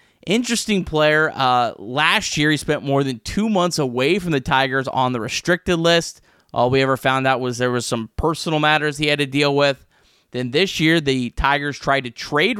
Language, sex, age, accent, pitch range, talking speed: English, male, 20-39, American, 130-170 Hz, 205 wpm